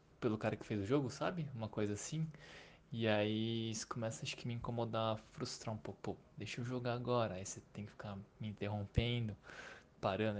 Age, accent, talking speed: 20-39, Brazilian, 190 wpm